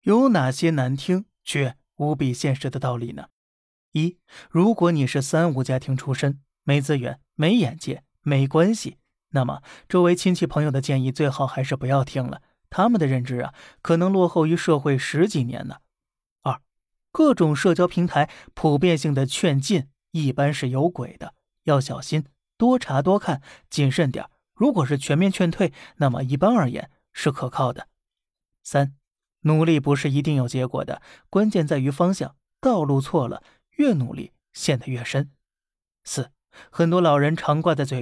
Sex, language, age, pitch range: male, Chinese, 20-39, 135-175 Hz